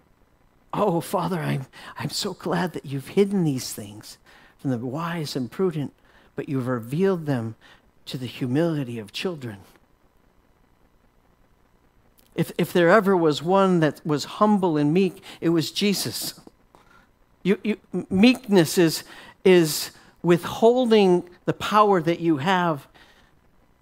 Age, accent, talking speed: 50-69, American, 125 wpm